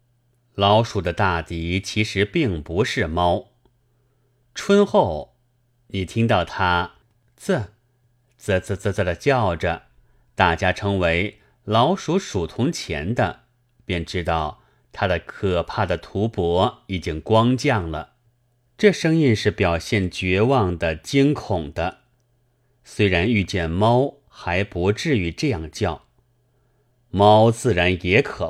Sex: male